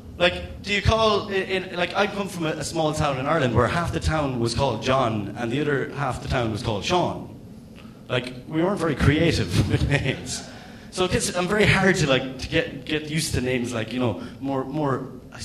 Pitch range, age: 110-145 Hz, 30-49